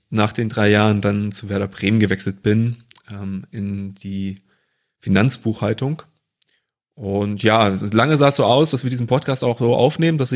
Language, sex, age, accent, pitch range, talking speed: German, male, 30-49, German, 105-135 Hz, 170 wpm